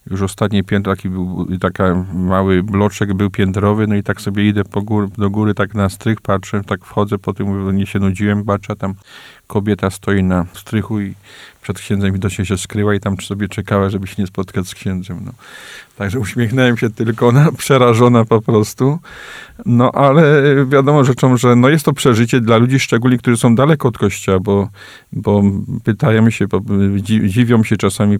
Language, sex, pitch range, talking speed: Polish, male, 100-120 Hz, 190 wpm